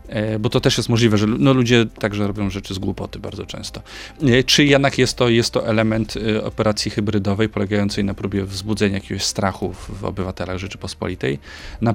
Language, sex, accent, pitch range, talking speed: Polish, male, native, 100-110 Hz, 160 wpm